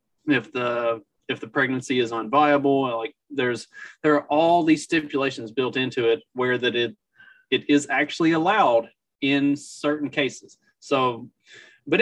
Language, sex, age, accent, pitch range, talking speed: English, male, 30-49, American, 120-150 Hz, 145 wpm